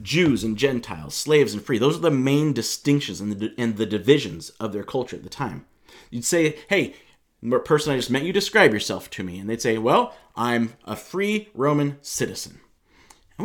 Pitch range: 110-145 Hz